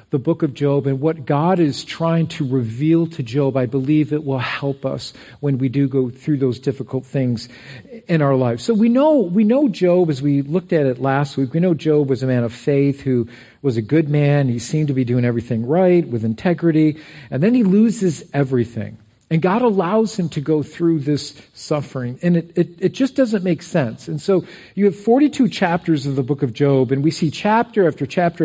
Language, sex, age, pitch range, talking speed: English, male, 50-69, 140-185 Hz, 220 wpm